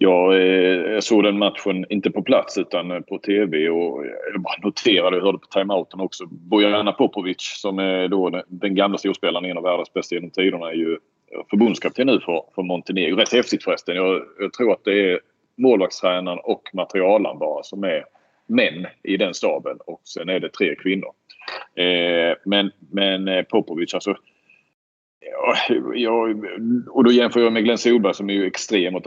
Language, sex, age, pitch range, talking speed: Swedish, male, 30-49, 95-115 Hz, 170 wpm